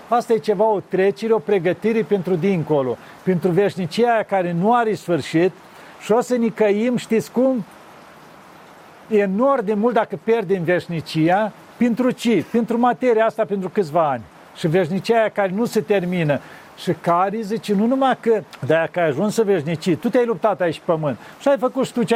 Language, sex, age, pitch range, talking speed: Romanian, male, 40-59, 180-230 Hz, 185 wpm